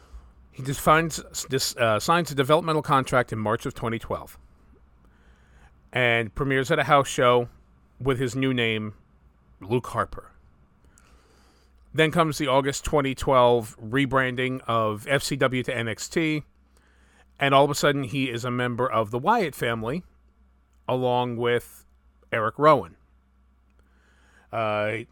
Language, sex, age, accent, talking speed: English, male, 40-59, American, 120 wpm